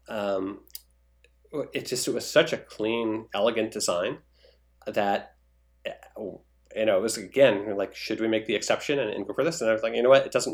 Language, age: English, 30-49